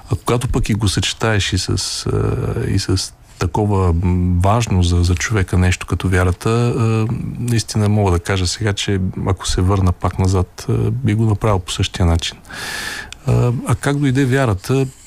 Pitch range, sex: 90-115 Hz, male